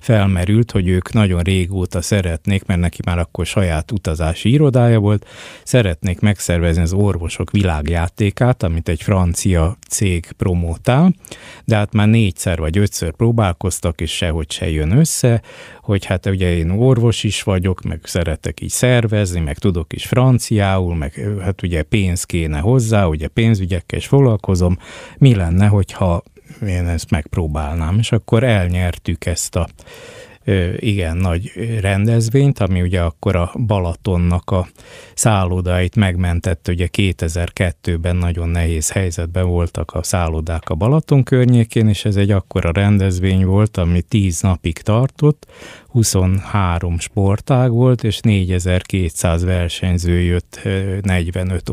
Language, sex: Hungarian, male